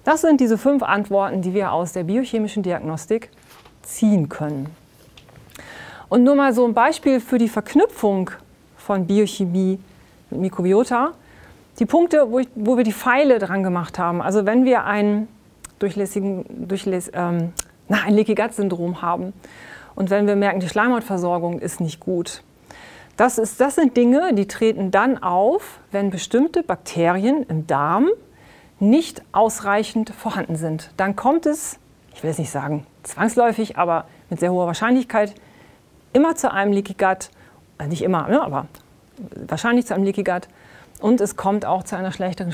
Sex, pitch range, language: female, 180-245 Hz, German